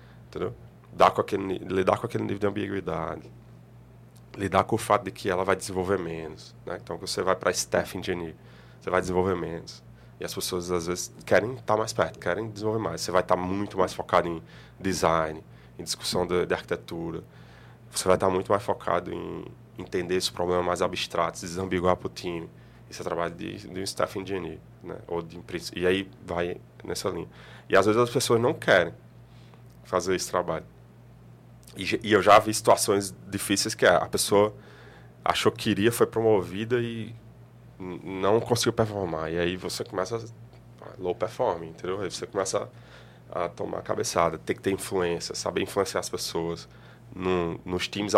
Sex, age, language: male, 20-39, Portuguese